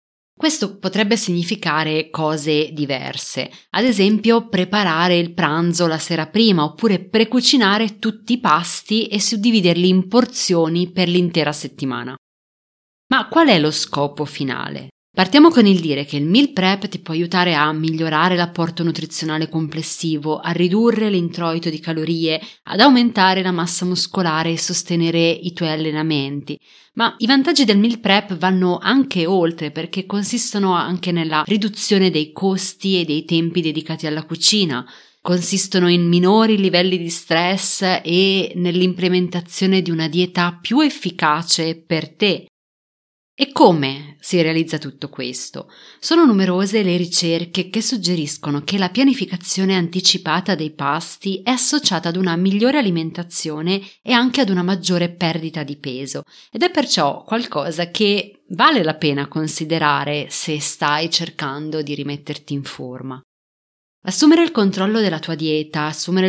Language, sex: Italian, female